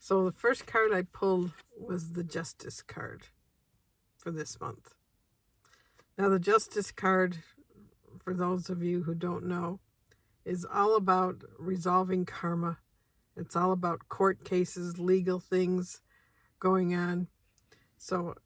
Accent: American